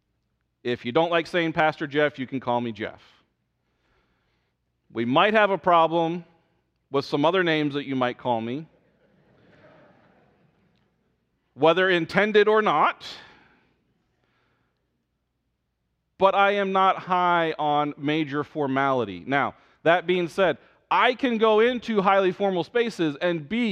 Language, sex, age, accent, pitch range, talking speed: English, male, 40-59, American, 125-175 Hz, 130 wpm